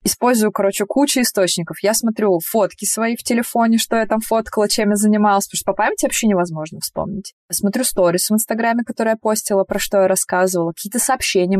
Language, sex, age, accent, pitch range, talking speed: Russian, female, 20-39, native, 175-220 Hz, 190 wpm